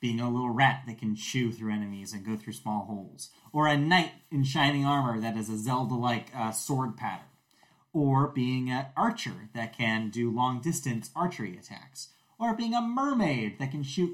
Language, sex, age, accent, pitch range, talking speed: English, male, 30-49, American, 120-150 Hz, 185 wpm